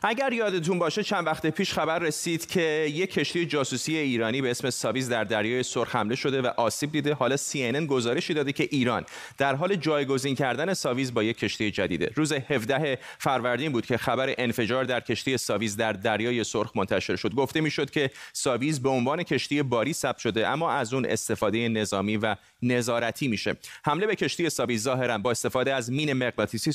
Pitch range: 110-145 Hz